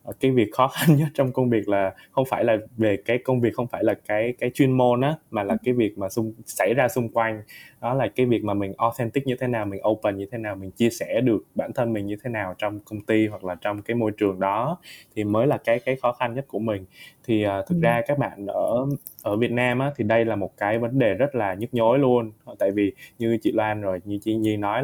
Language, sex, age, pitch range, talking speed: Vietnamese, male, 20-39, 105-130 Hz, 270 wpm